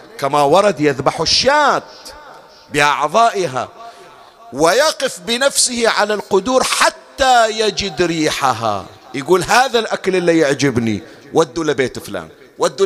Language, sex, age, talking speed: Arabic, male, 40-59, 100 wpm